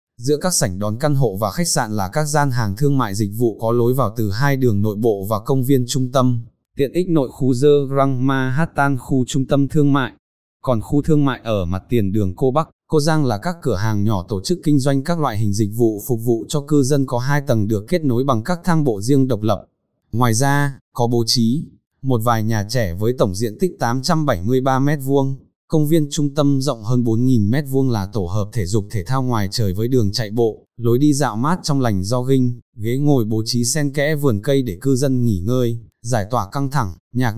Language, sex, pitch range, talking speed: Vietnamese, male, 115-140 Hz, 235 wpm